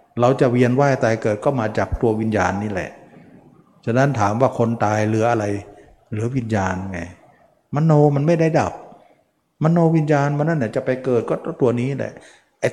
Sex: male